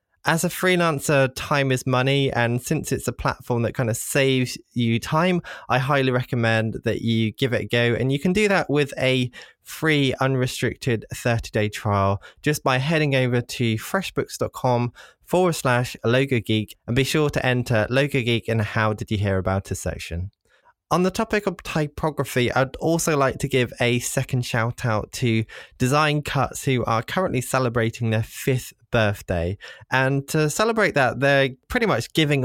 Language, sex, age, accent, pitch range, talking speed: English, male, 20-39, British, 110-140 Hz, 175 wpm